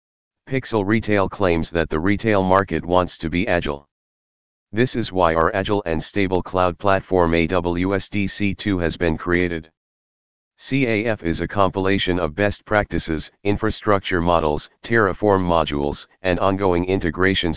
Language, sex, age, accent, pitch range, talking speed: English, male, 40-59, American, 80-100 Hz, 130 wpm